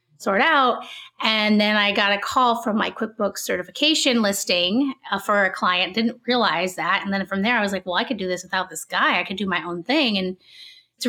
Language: English